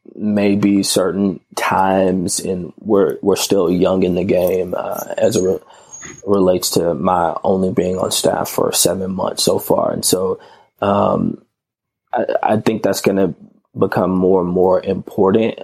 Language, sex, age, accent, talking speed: English, male, 20-39, American, 155 wpm